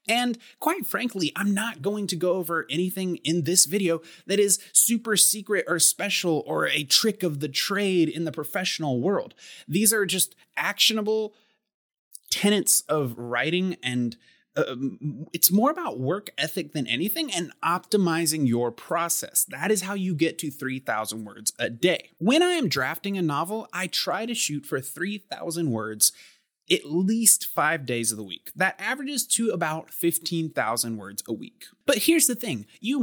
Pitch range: 135-200 Hz